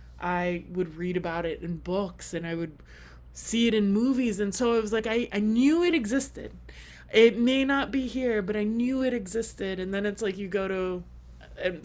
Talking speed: 215 wpm